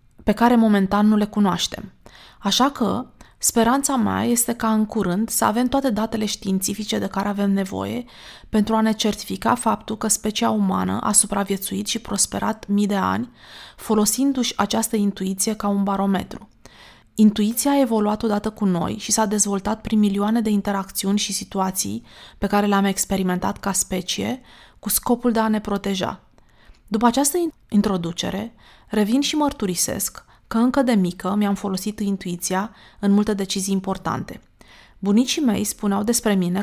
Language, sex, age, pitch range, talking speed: Romanian, female, 20-39, 195-225 Hz, 150 wpm